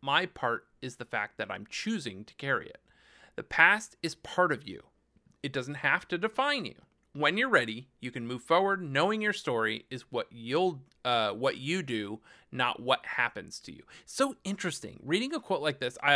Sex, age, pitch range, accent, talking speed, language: male, 30-49, 120-160 Hz, American, 195 wpm, English